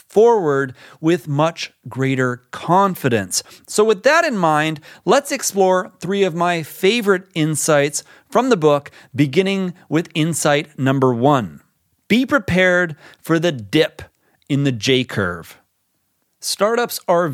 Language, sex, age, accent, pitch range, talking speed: English, male, 40-59, American, 140-175 Hz, 120 wpm